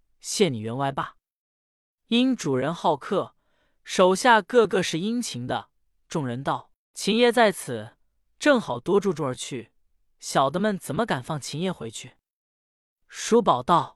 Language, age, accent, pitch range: Chinese, 20-39, native, 130-210 Hz